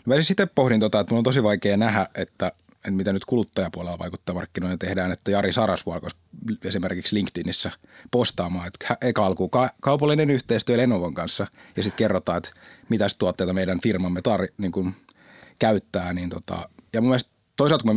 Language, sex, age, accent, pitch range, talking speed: Finnish, male, 30-49, native, 95-115 Hz, 145 wpm